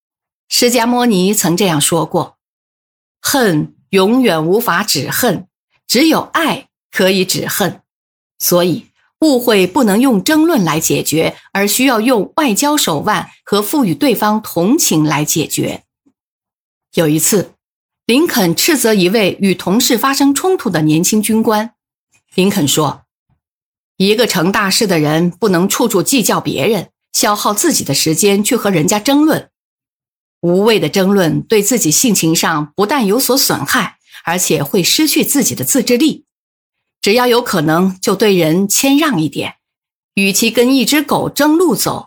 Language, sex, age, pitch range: Chinese, female, 50-69, 170-245 Hz